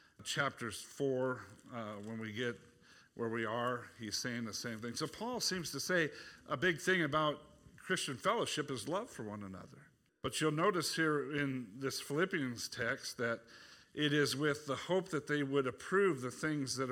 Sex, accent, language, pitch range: male, American, English, 120-150 Hz